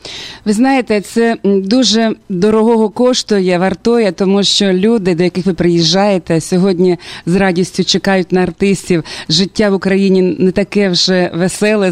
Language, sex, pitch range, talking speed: Russian, female, 185-255 Hz, 140 wpm